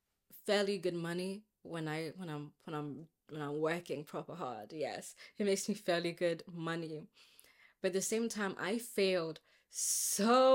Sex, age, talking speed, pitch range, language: female, 20-39, 165 wpm, 175-220 Hz, English